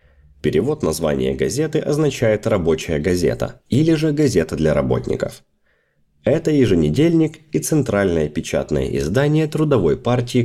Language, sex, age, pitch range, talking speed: Russian, male, 30-49, 90-140 Hz, 110 wpm